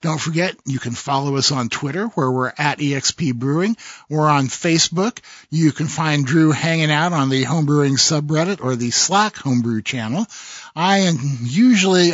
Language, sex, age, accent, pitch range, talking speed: English, male, 50-69, American, 135-180 Hz, 170 wpm